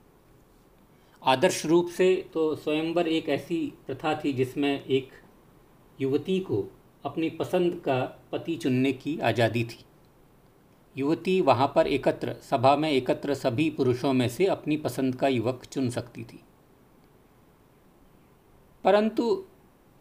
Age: 50-69